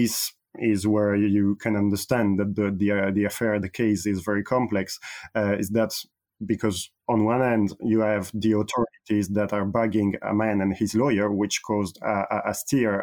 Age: 30-49